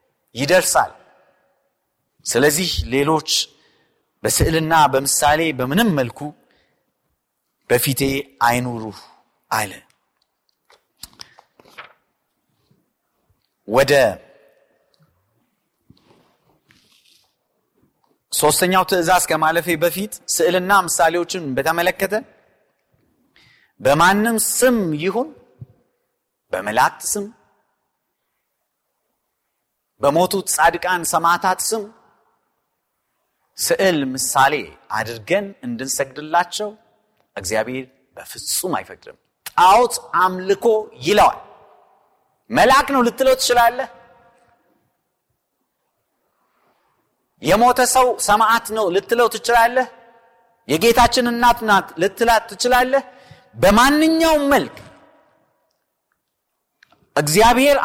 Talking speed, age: 55 wpm, 40-59